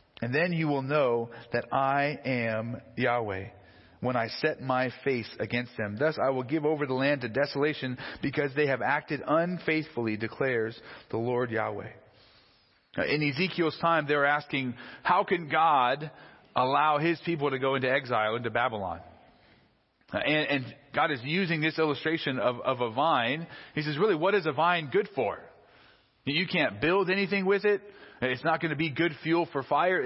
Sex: male